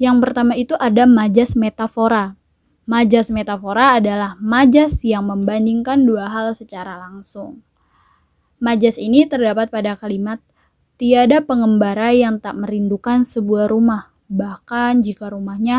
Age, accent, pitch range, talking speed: 10-29, native, 205-240 Hz, 120 wpm